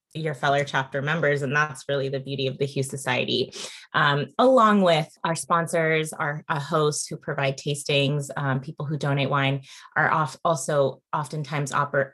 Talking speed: 170 wpm